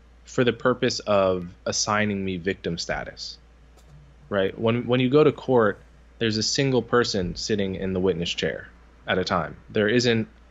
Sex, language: male, English